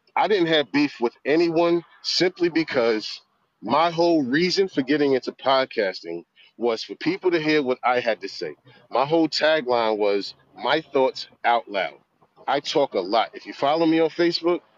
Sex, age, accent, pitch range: male, 40-59, American, 125-175 Hz